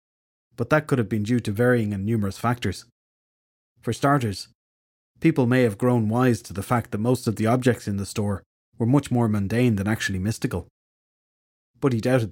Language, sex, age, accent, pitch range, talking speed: English, male, 30-49, Irish, 100-120 Hz, 190 wpm